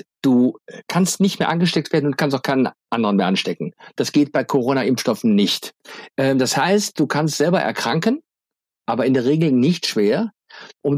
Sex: male